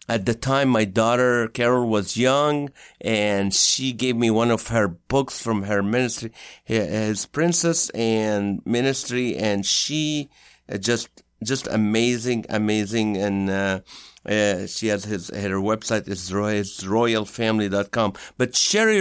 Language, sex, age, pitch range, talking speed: English, male, 50-69, 110-140 Hz, 135 wpm